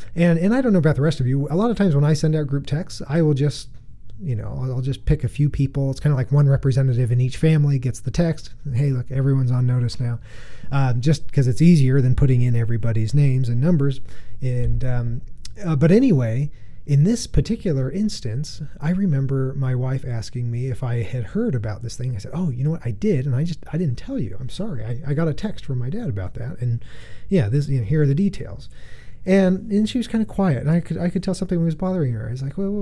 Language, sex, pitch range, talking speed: English, male, 120-165 Hz, 260 wpm